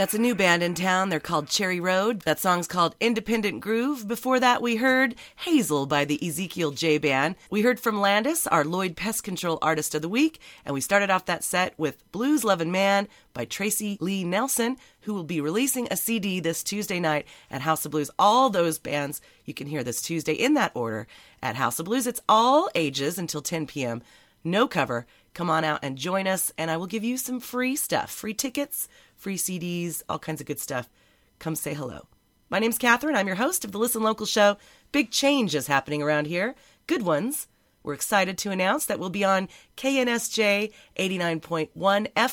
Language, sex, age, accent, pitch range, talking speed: English, female, 30-49, American, 155-230 Hz, 200 wpm